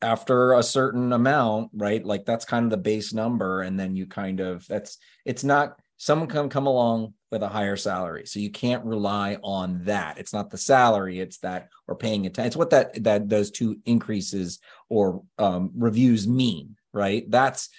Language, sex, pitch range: English, male, 105-130 Hz